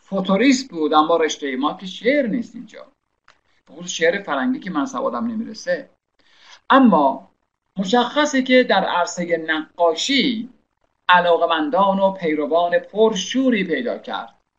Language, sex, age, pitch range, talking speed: Persian, male, 50-69, 180-255 Hz, 115 wpm